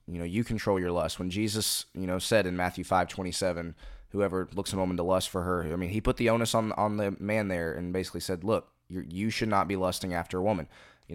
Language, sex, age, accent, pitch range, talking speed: English, male, 20-39, American, 90-110 Hz, 265 wpm